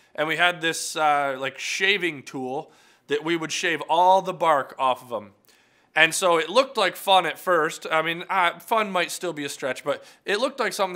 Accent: American